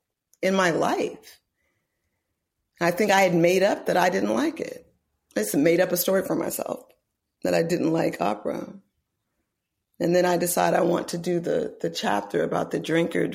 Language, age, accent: English, 40-59, American